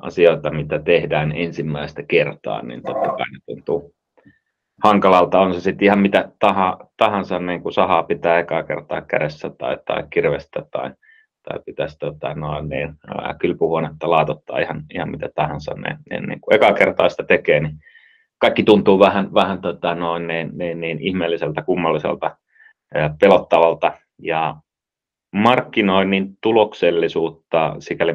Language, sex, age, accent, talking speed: Finnish, male, 30-49, native, 110 wpm